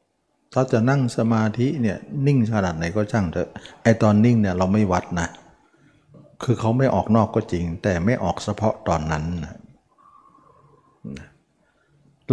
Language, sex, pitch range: Thai, male, 95-120 Hz